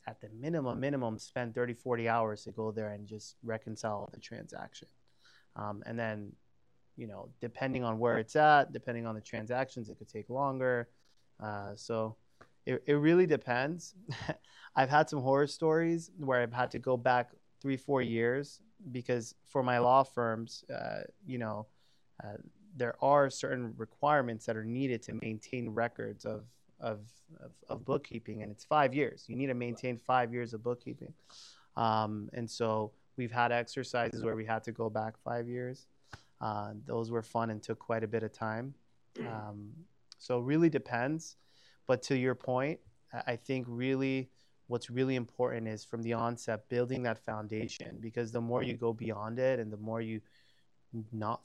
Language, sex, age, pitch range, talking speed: English, male, 30-49, 110-130 Hz, 175 wpm